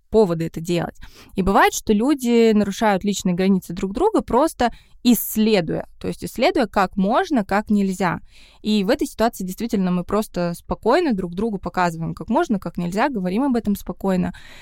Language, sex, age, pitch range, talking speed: Russian, female, 20-39, 180-225 Hz, 165 wpm